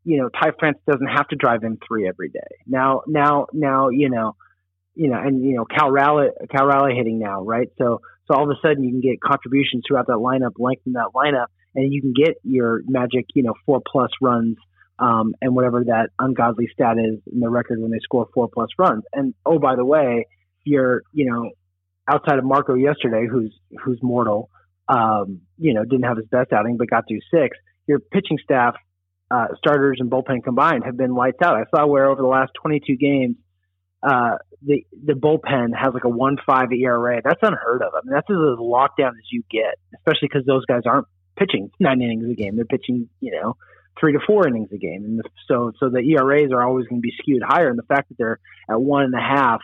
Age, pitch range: 30-49, 115-140 Hz